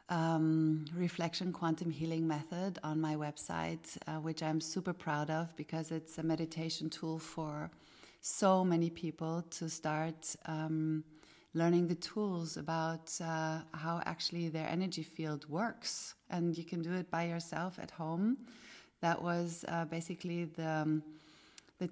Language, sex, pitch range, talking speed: English, female, 155-175 Hz, 145 wpm